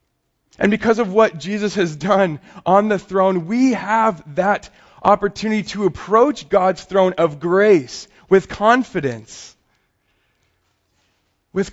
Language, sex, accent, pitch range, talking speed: English, male, American, 130-190 Hz, 120 wpm